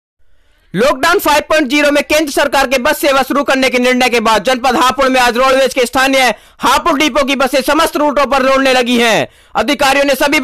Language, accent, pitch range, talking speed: Hindi, native, 245-275 Hz, 195 wpm